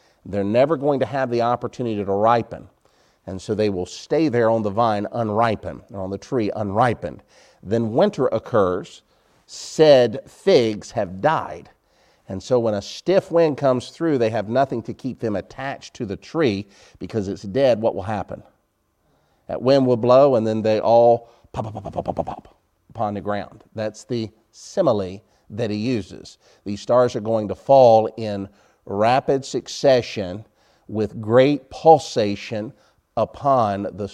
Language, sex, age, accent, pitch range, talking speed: English, male, 50-69, American, 105-130 Hz, 160 wpm